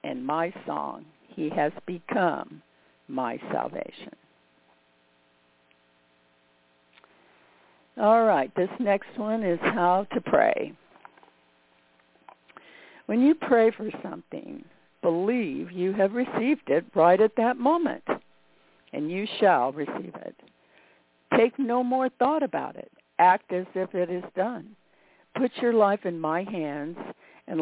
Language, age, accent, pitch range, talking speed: English, 60-79, American, 145-220 Hz, 120 wpm